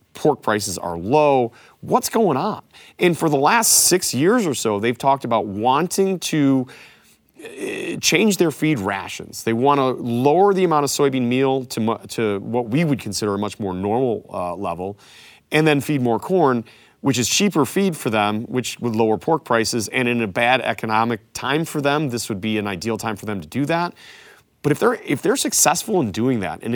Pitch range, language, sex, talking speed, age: 110-150 Hz, English, male, 200 wpm, 30-49